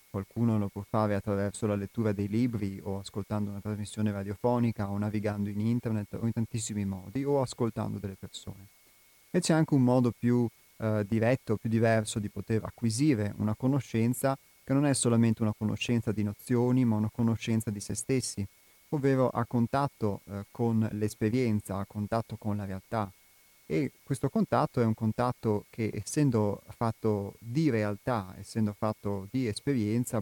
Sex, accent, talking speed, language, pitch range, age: male, native, 160 wpm, Italian, 100-120 Hz, 30-49